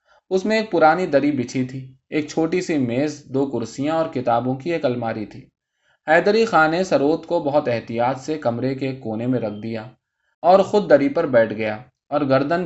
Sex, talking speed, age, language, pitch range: male, 190 wpm, 20-39, Urdu, 115-160 Hz